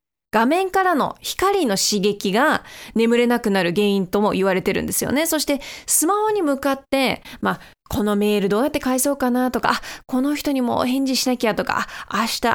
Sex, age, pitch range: female, 20-39, 210-295 Hz